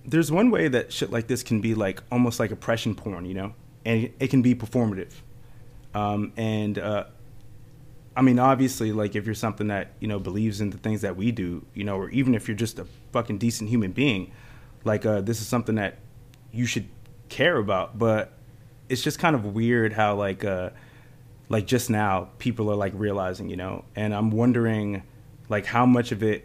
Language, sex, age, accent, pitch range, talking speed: English, male, 20-39, American, 105-125 Hz, 200 wpm